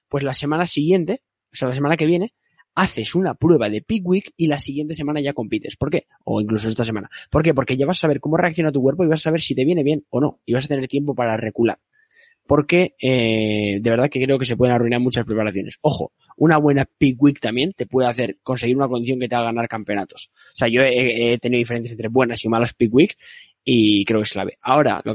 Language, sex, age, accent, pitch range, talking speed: Spanish, male, 20-39, Spanish, 120-150 Hz, 250 wpm